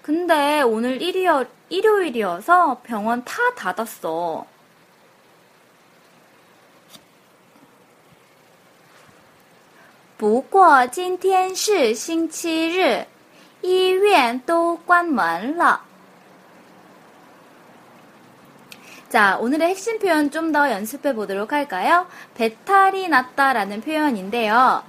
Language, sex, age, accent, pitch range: Korean, female, 20-39, native, 220-370 Hz